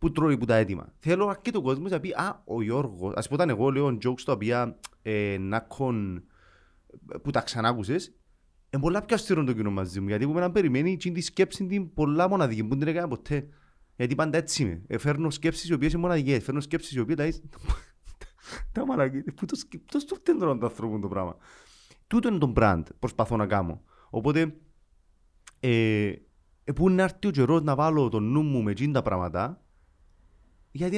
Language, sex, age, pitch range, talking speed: Greek, male, 30-49, 105-155 Hz, 90 wpm